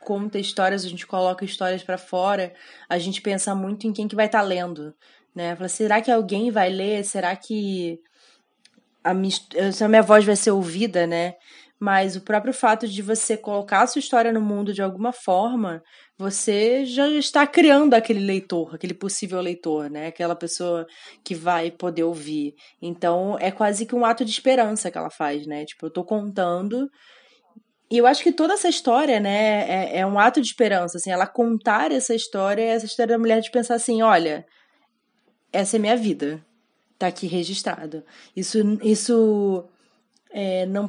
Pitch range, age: 180-225 Hz, 20-39